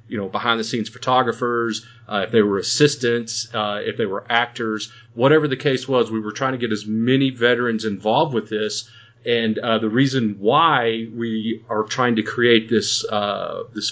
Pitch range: 105-120 Hz